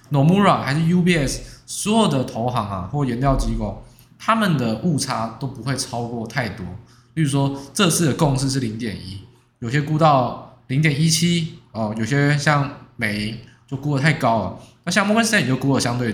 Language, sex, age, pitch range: Chinese, male, 20-39, 115-155 Hz